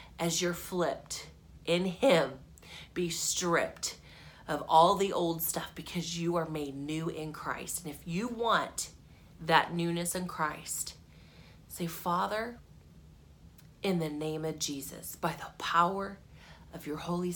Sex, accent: female, American